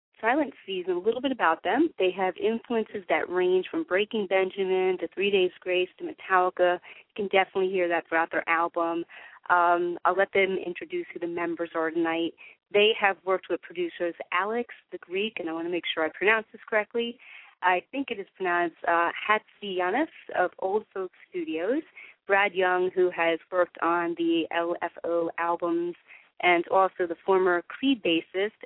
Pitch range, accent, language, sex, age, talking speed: 170-210 Hz, American, English, female, 30-49, 175 wpm